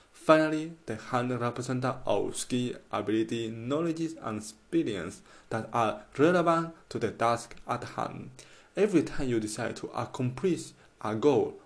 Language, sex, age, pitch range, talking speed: English, male, 20-39, 110-145 Hz, 135 wpm